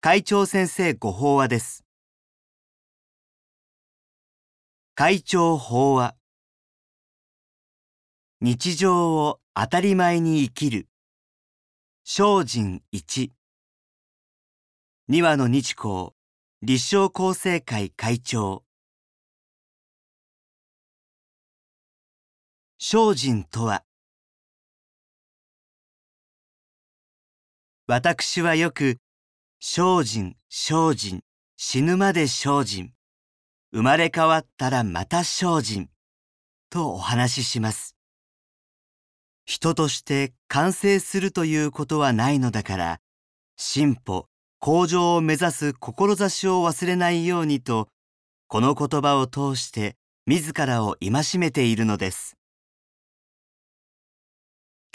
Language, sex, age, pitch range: Japanese, male, 40-59, 105-170 Hz